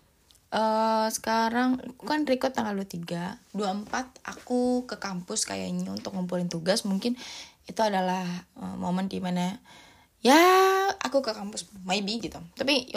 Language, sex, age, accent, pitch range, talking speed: Indonesian, female, 20-39, native, 200-270 Hz, 135 wpm